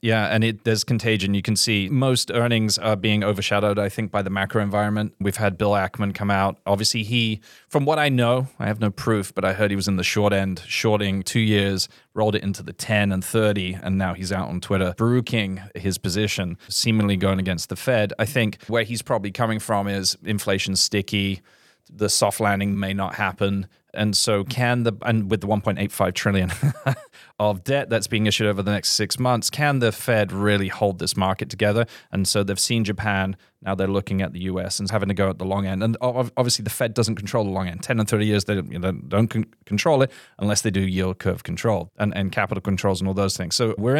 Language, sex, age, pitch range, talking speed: English, male, 20-39, 100-115 Hz, 220 wpm